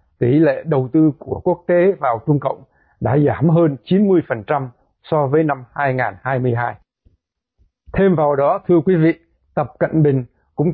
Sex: male